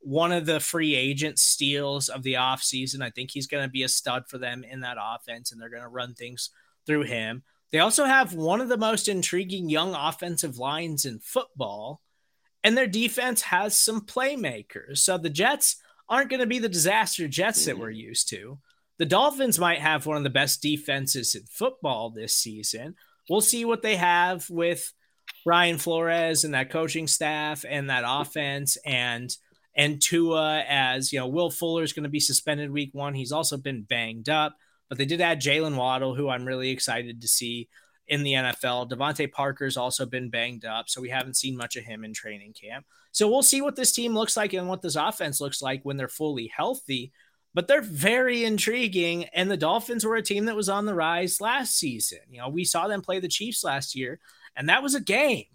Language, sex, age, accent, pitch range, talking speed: English, male, 20-39, American, 130-190 Hz, 205 wpm